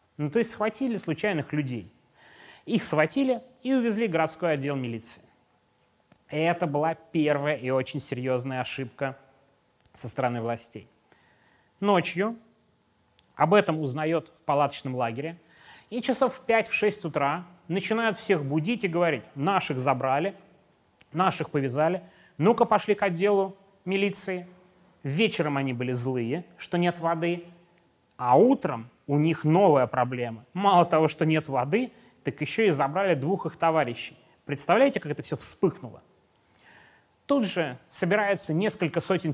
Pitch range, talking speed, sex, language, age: 140-195 Hz, 135 wpm, male, Russian, 30-49